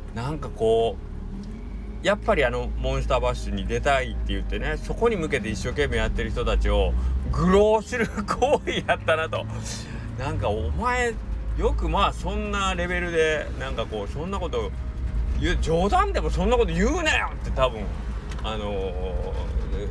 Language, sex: Japanese, male